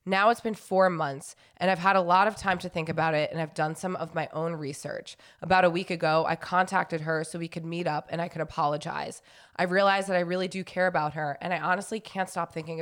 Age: 20-39